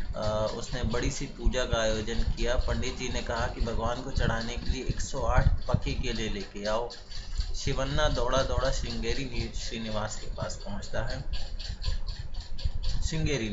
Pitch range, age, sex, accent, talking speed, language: 100-130 Hz, 30-49, male, native, 150 wpm, Hindi